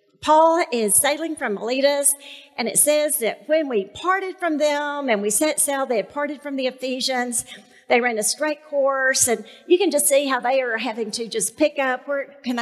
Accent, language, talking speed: American, English, 210 wpm